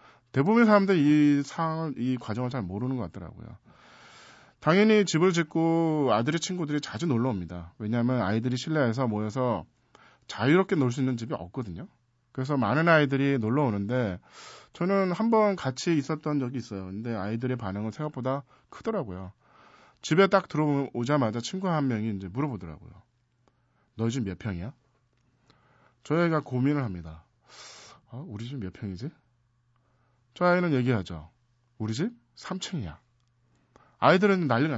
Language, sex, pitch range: Korean, male, 120-160 Hz